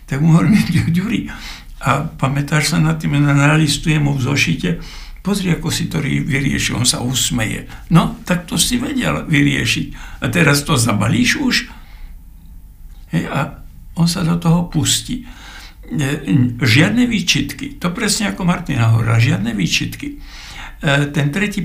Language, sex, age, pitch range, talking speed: Slovak, male, 60-79, 130-170 Hz, 130 wpm